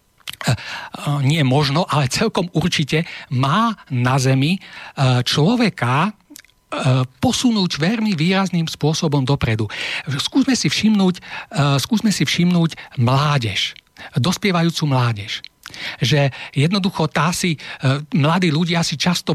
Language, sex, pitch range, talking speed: Slovak, male, 140-190 Hz, 90 wpm